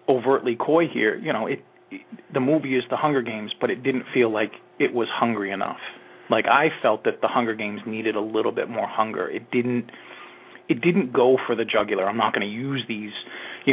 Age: 30-49